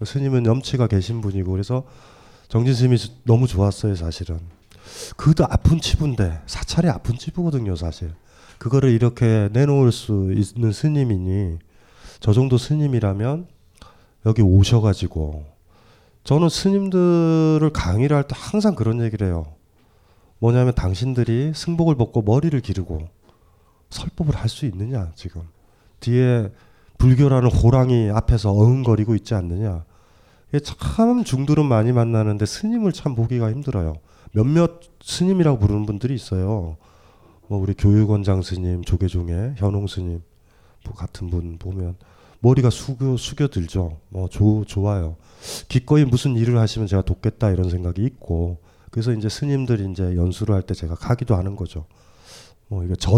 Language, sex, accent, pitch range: Korean, male, native, 95-125 Hz